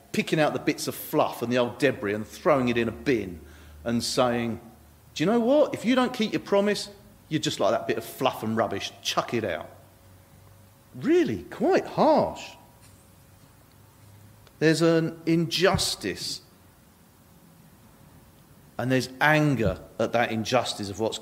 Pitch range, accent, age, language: 110-160 Hz, British, 40-59, English